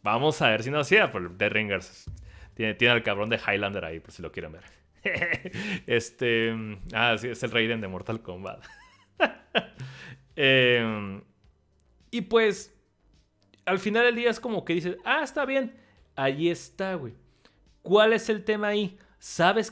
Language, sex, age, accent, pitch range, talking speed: Spanish, male, 40-59, Mexican, 120-170 Hz, 170 wpm